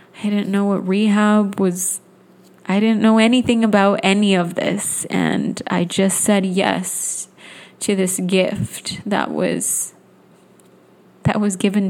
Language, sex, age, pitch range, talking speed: English, female, 20-39, 185-210 Hz, 135 wpm